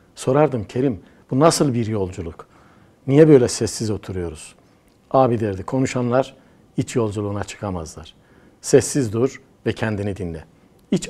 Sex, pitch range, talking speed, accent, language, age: male, 95-140 Hz, 120 wpm, native, Turkish, 60-79